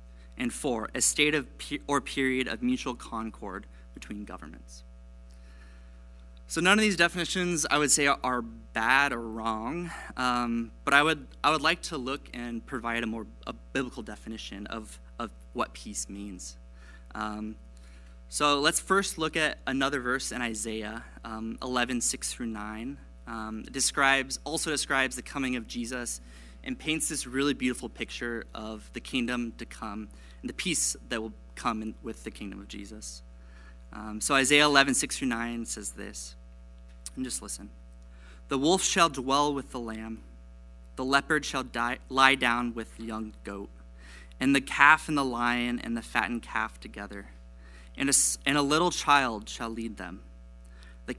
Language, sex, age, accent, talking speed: English, male, 20-39, American, 165 wpm